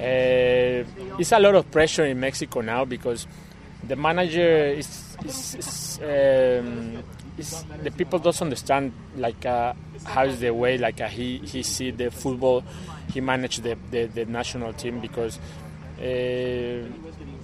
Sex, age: male, 20-39